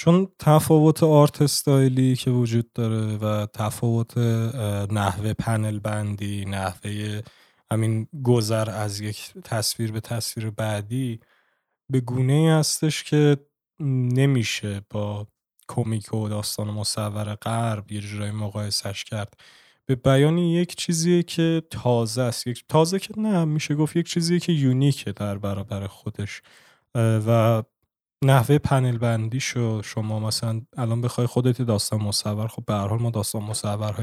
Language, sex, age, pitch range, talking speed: Persian, male, 20-39, 110-140 Hz, 125 wpm